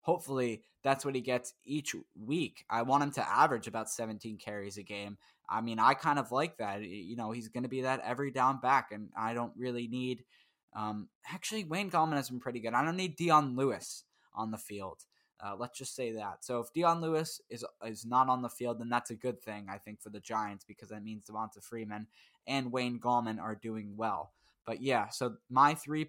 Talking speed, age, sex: 220 wpm, 10-29, male